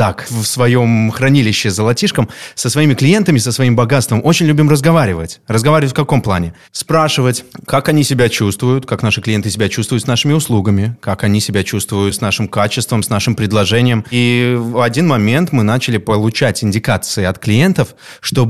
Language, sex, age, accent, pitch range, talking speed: Russian, male, 30-49, native, 105-135 Hz, 165 wpm